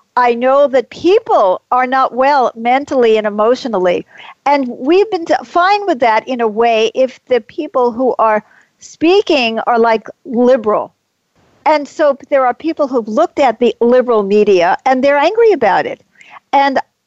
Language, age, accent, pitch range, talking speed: English, 50-69, American, 220-285 Hz, 160 wpm